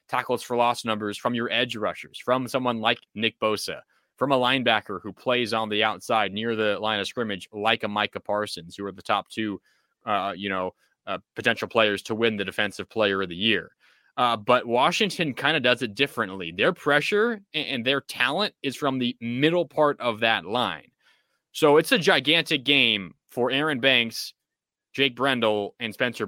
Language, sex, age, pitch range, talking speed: English, male, 20-39, 115-150 Hz, 185 wpm